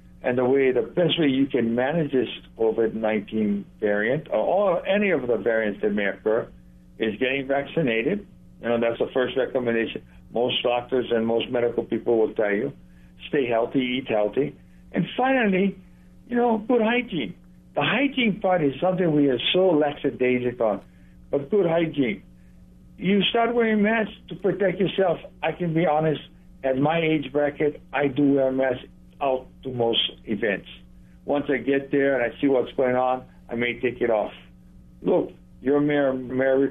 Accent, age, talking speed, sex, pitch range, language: American, 60-79, 170 wpm, male, 115-170 Hz, English